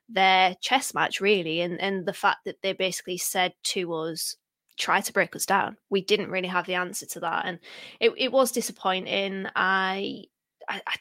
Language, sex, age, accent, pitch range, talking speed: English, female, 20-39, British, 175-195 Hz, 185 wpm